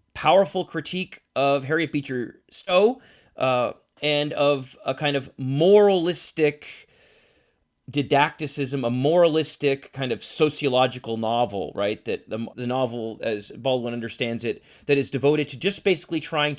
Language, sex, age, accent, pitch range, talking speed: English, male, 30-49, American, 120-155 Hz, 130 wpm